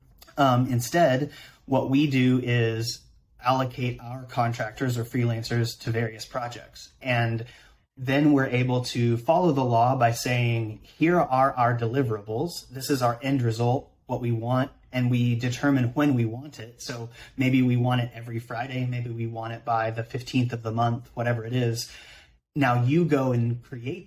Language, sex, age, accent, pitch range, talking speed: English, male, 30-49, American, 115-135 Hz, 170 wpm